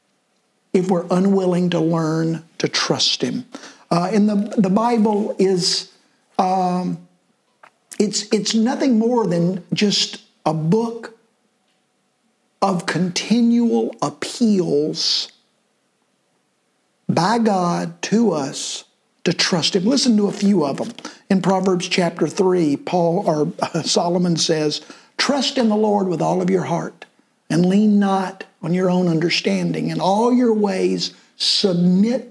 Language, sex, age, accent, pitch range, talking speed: English, male, 50-69, American, 175-220 Hz, 130 wpm